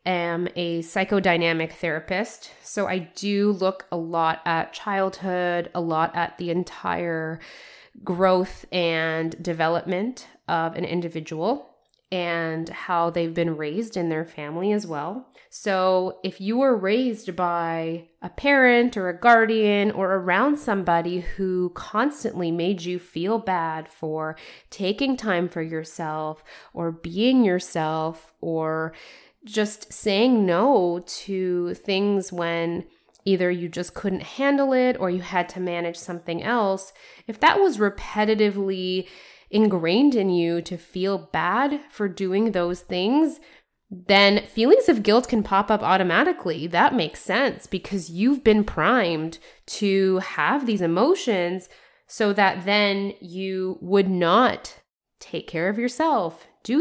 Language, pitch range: English, 170-210 Hz